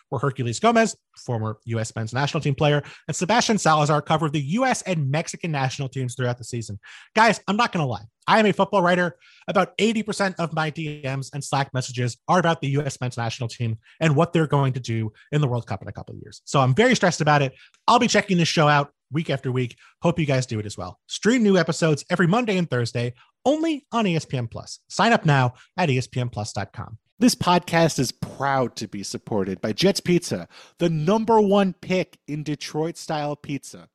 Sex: male